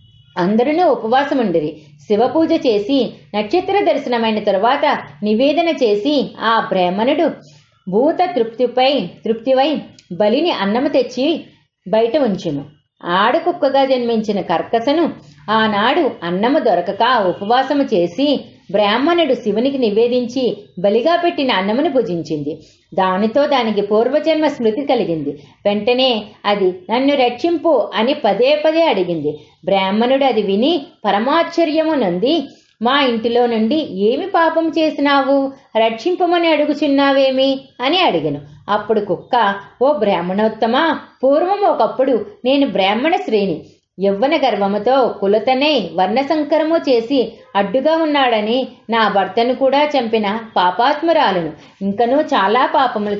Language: Telugu